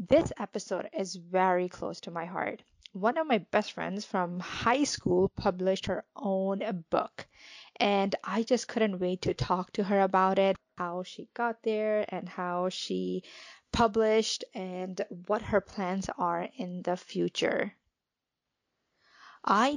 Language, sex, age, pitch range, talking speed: English, female, 20-39, 185-220 Hz, 145 wpm